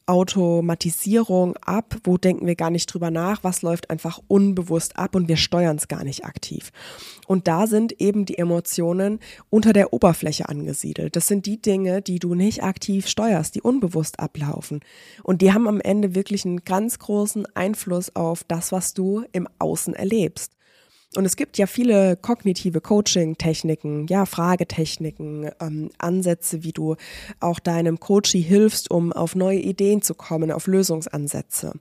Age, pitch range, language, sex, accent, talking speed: 20-39, 165-195 Hz, German, female, German, 160 wpm